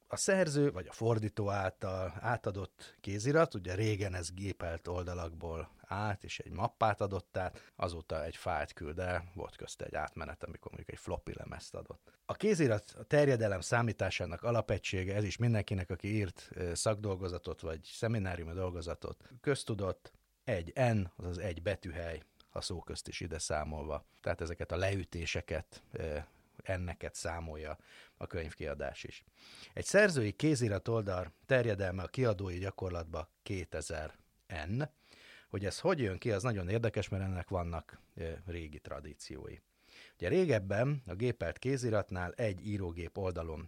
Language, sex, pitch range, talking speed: Hungarian, male, 85-110 Hz, 140 wpm